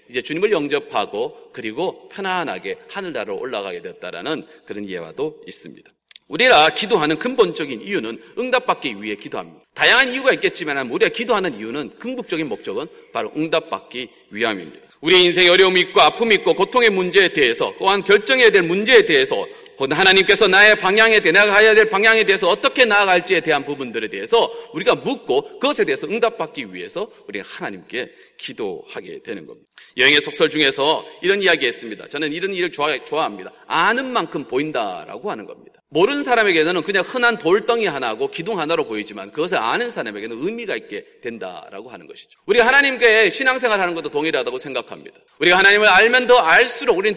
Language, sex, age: Korean, male, 40-59